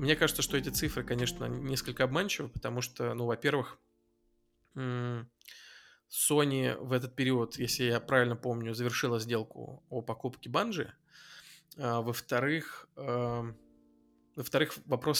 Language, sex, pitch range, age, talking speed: Russian, male, 115-130 Hz, 20-39, 110 wpm